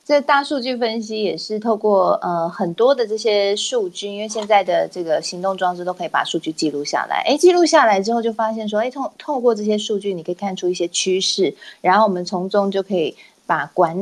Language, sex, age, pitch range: Chinese, female, 20-39, 175-230 Hz